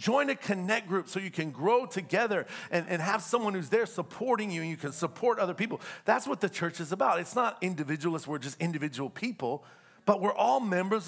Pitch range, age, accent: 170-215 Hz, 40-59, American